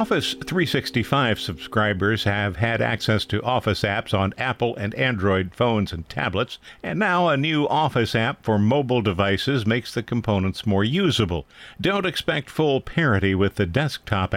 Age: 50-69